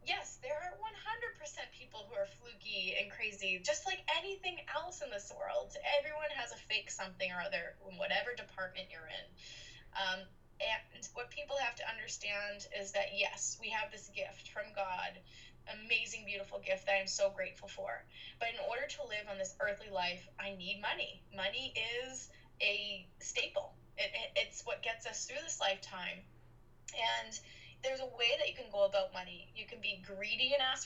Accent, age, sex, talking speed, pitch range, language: American, 10-29, female, 185 wpm, 195-290 Hz, English